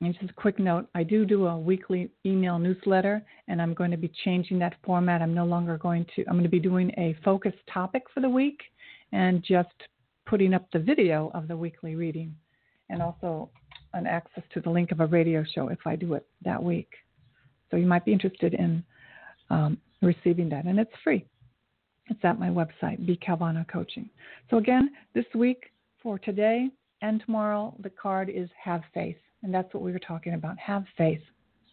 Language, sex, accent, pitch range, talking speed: English, female, American, 170-200 Hz, 195 wpm